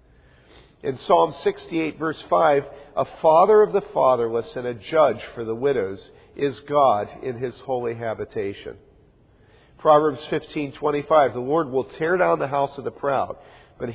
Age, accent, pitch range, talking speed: 50-69, American, 120-155 Hz, 165 wpm